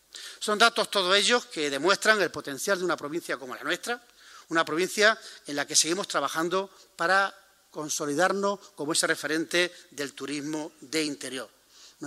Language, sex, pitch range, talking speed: Spanish, male, 145-180 Hz, 155 wpm